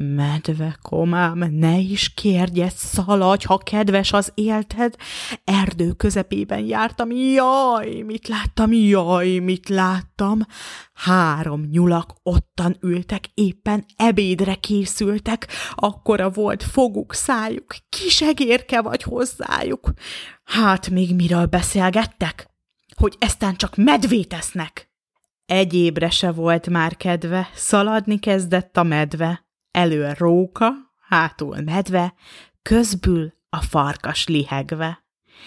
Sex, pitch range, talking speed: female, 160-205 Hz, 100 wpm